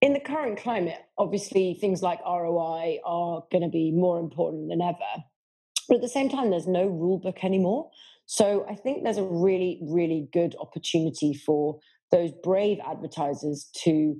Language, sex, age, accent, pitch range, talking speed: English, female, 30-49, British, 160-195 Hz, 170 wpm